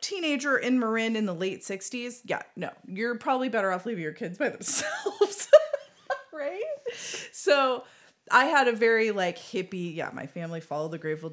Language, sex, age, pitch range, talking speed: English, female, 30-49, 165-240 Hz, 170 wpm